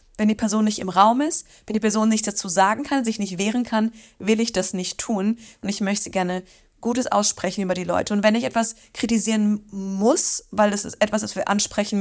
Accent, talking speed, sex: German, 225 wpm, female